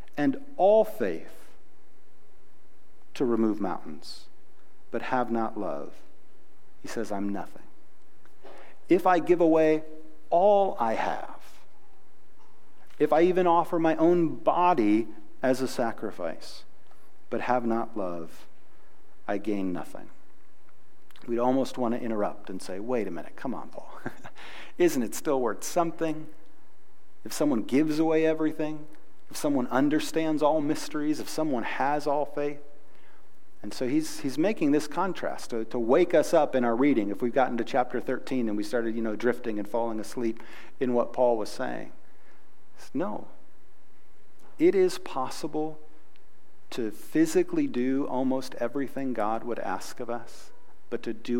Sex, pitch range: male, 115-160 Hz